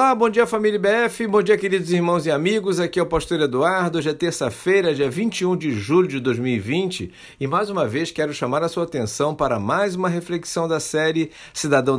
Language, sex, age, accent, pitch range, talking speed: Portuguese, male, 50-69, Brazilian, 125-175 Hz, 205 wpm